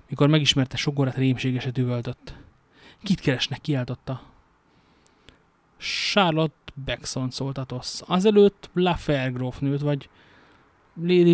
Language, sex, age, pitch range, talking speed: Hungarian, male, 30-49, 125-150 Hz, 85 wpm